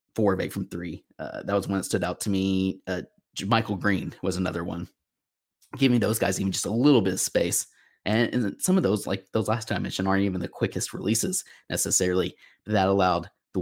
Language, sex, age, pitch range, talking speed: English, male, 20-39, 95-110 Hz, 215 wpm